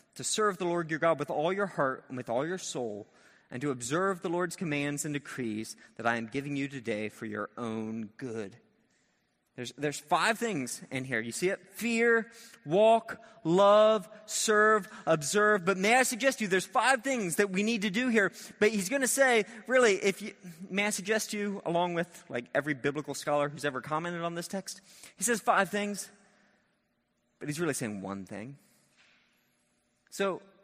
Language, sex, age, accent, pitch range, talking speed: English, male, 30-49, American, 130-205 Hz, 190 wpm